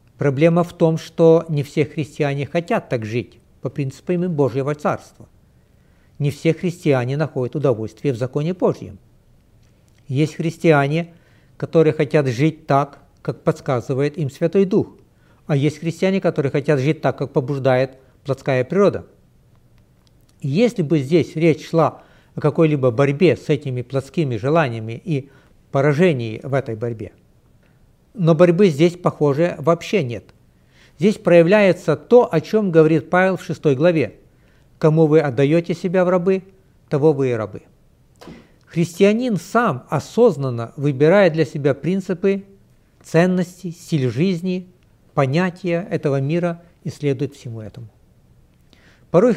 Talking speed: 130 wpm